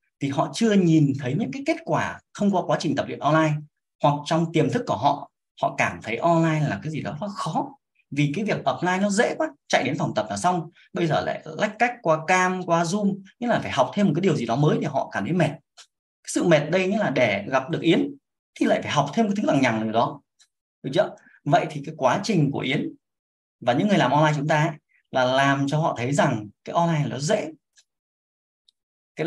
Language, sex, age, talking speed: Vietnamese, male, 20-39, 240 wpm